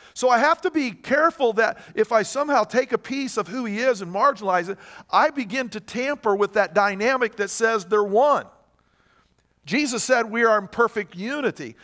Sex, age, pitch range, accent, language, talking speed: male, 50-69, 195-250 Hz, American, English, 195 wpm